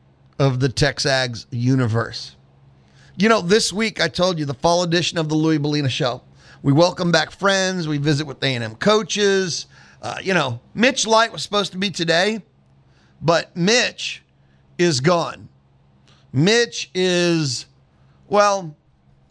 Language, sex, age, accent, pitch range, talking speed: English, male, 40-59, American, 125-175 Hz, 145 wpm